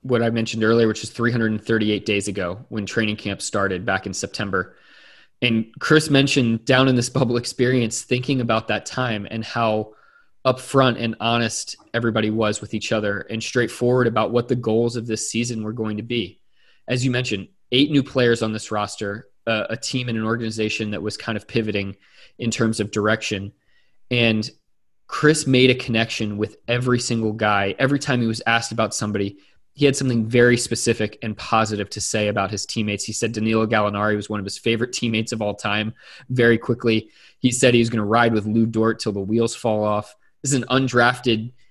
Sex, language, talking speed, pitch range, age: male, English, 195 wpm, 110-125 Hz, 20-39